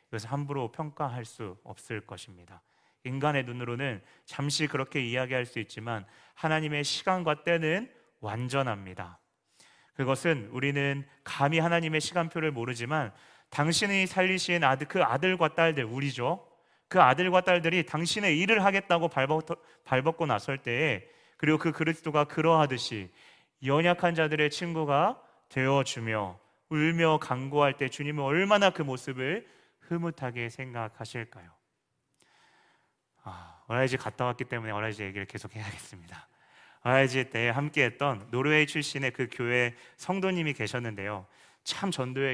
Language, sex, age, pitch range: Korean, male, 30-49, 115-155 Hz